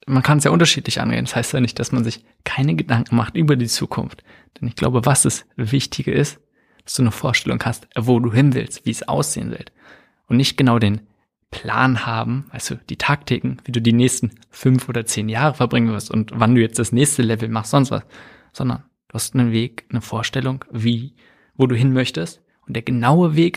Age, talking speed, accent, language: 20-39, 215 wpm, German, German